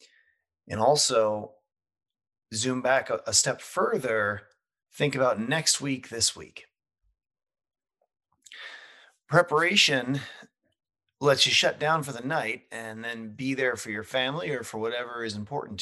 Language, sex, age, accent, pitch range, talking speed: English, male, 30-49, American, 100-130 Hz, 125 wpm